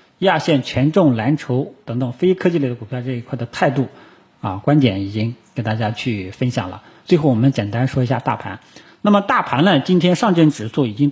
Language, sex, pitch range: Chinese, male, 115-150 Hz